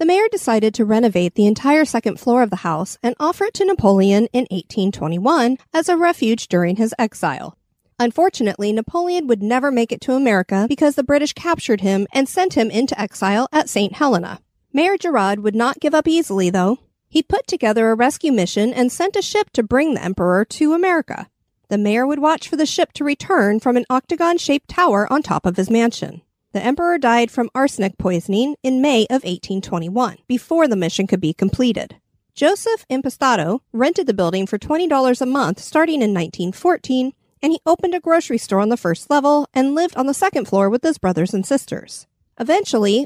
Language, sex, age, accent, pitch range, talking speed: English, female, 40-59, American, 205-300 Hz, 190 wpm